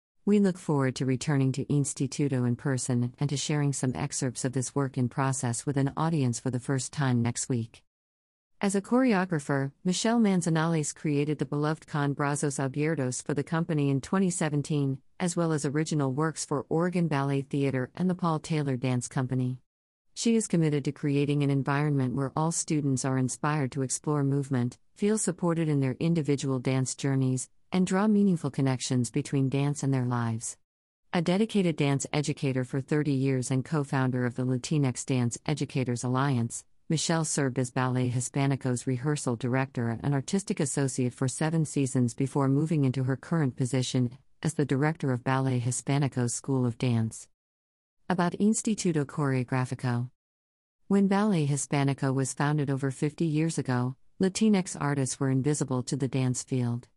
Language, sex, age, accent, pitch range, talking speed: English, female, 50-69, American, 130-155 Hz, 160 wpm